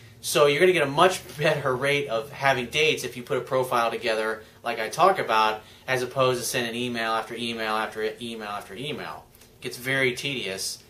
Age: 30-49